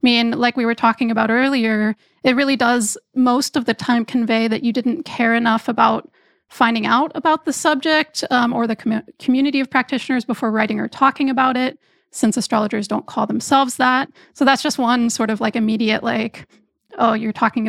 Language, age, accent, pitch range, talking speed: English, 30-49, American, 225-270 Hz, 195 wpm